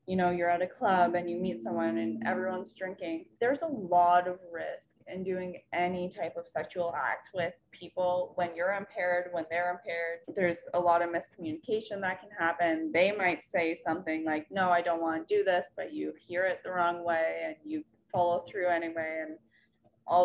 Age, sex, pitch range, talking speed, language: 20-39, female, 170-195 Hz, 200 wpm, English